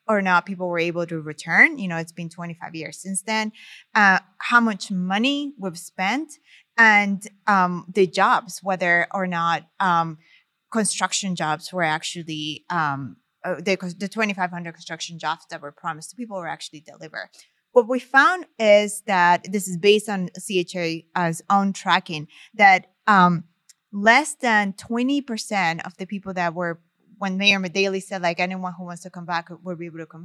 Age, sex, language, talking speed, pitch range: 20-39, female, English, 170 wpm, 170-210 Hz